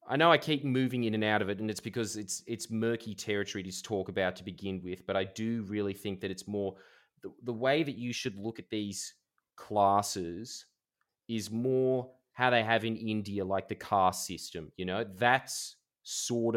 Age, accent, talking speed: 20-39, Australian, 205 wpm